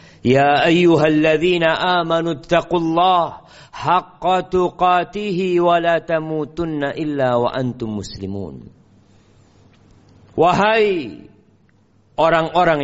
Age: 50-69